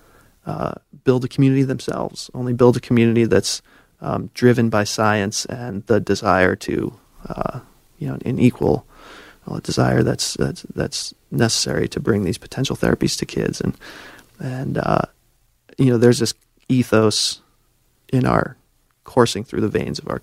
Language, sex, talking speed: English, male, 155 wpm